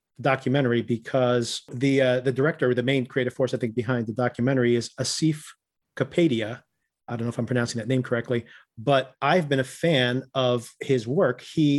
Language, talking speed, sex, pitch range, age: English, 190 wpm, male, 120-135 Hz, 40-59